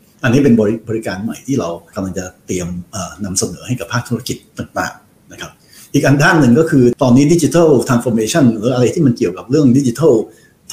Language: Thai